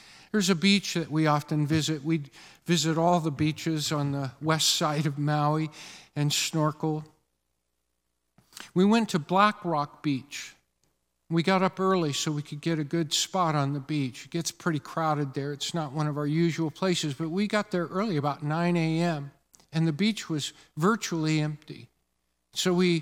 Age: 50-69